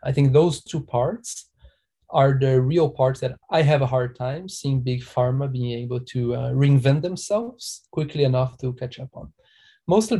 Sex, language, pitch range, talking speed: male, English, 125-150 Hz, 180 wpm